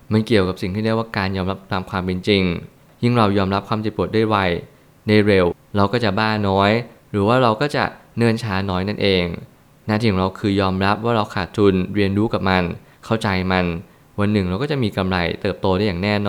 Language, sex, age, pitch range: Thai, male, 20-39, 95-115 Hz